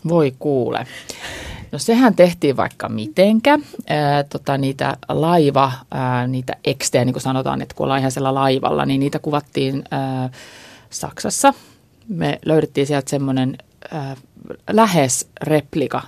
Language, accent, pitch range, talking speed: Finnish, native, 135-160 Hz, 120 wpm